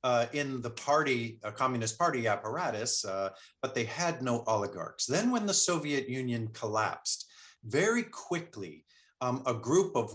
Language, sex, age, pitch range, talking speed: English, male, 50-69, 120-165 Hz, 155 wpm